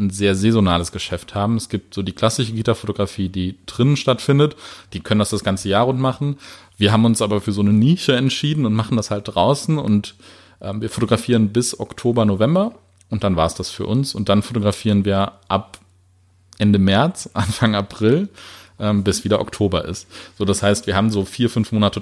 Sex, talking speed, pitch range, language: male, 200 wpm, 95-115 Hz, German